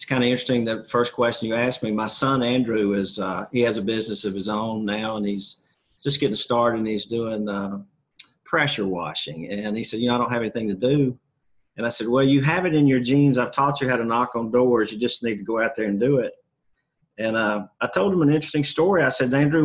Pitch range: 110-130 Hz